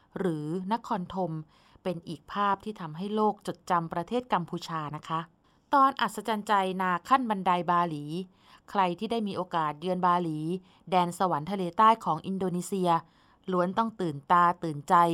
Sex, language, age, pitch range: female, Thai, 20-39, 170-215 Hz